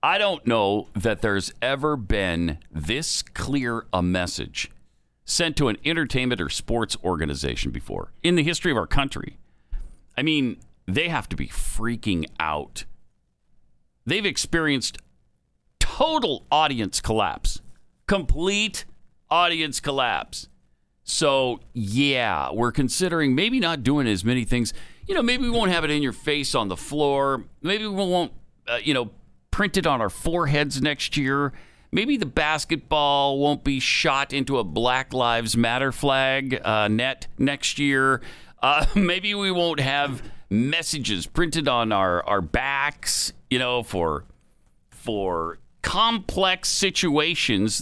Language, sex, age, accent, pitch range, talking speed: English, male, 50-69, American, 110-165 Hz, 135 wpm